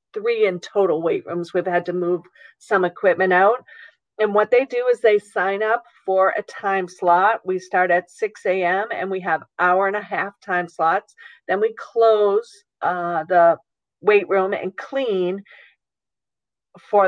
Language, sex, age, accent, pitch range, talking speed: English, female, 50-69, American, 180-230 Hz, 170 wpm